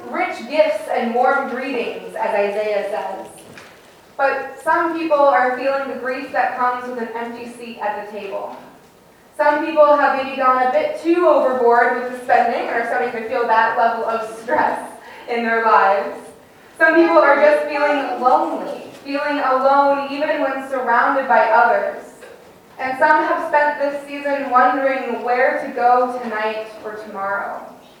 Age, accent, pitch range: 20-39, American, 240-295 Hz